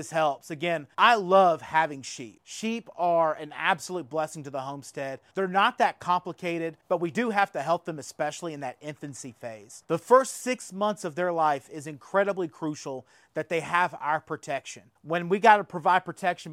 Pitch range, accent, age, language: 145-180 Hz, American, 30-49, English